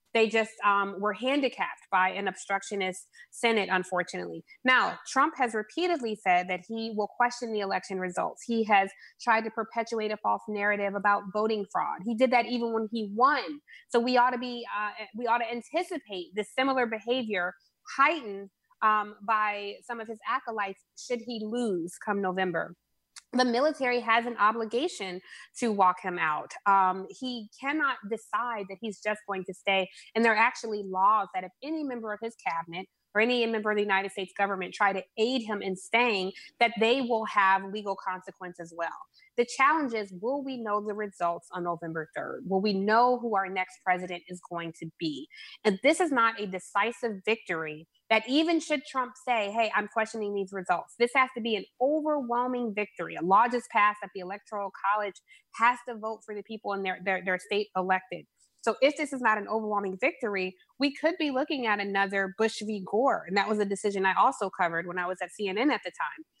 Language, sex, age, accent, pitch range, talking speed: English, female, 20-39, American, 195-240 Hz, 190 wpm